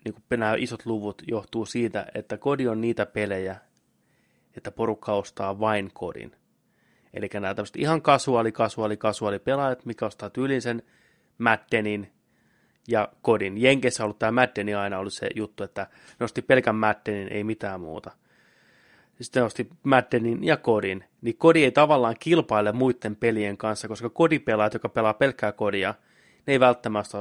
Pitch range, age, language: 105-125 Hz, 30-49, Finnish